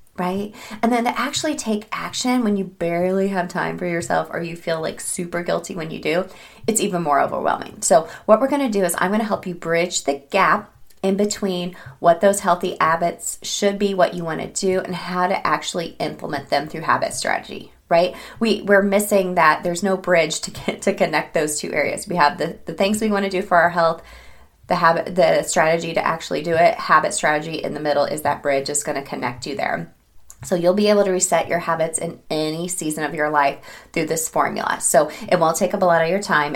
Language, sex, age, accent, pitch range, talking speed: English, female, 20-39, American, 155-190 Hz, 230 wpm